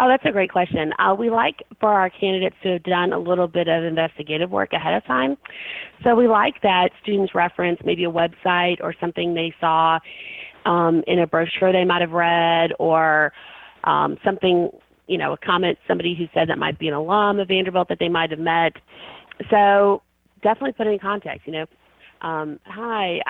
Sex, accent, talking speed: female, American, 195 wpm